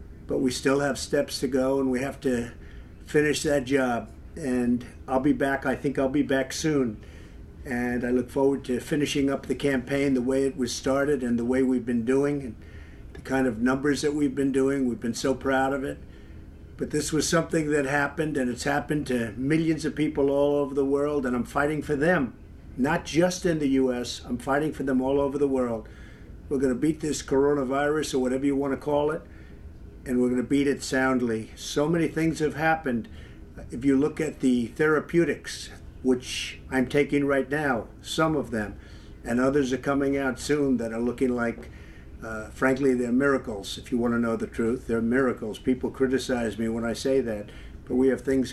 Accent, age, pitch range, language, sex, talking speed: American, 50-69, 120-140 Hz, English, male, 205 wpm